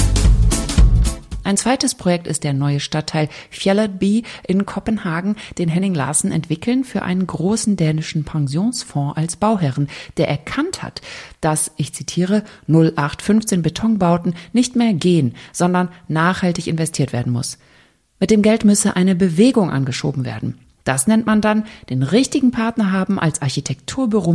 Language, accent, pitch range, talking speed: German, German, 155-215 Hz, 135 wpm